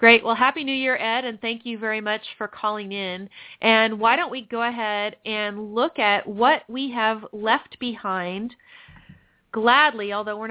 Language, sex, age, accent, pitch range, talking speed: English, female, 40-59, American, 190-250 Hz, 175 wpm